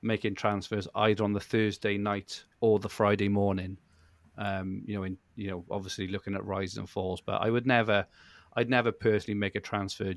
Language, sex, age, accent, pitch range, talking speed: English, male, 30-49, British, 95-110 Hz, 195 wpm